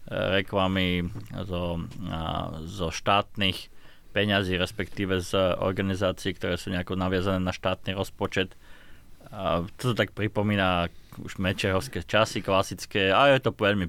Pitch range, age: 90-105 Hz, 20-39